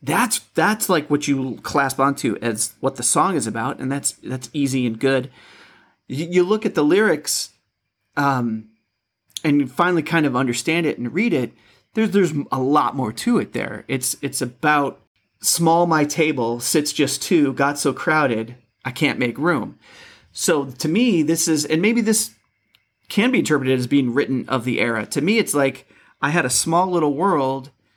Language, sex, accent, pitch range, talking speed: English, male, American, 120-155 Hz, 190 wpm